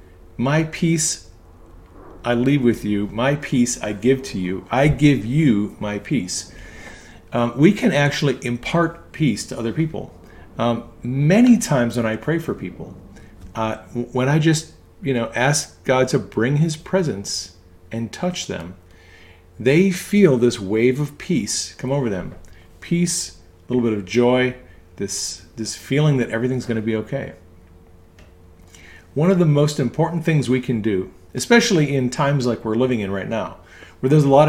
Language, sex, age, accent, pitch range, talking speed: English, male, 40-59, American, 90-145 Hz, 165 wpm